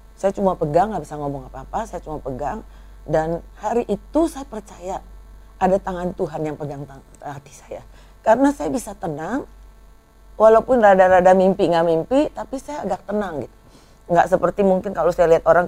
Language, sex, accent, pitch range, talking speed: Indonesian, female, native, 160-215 Hz, 165 wpm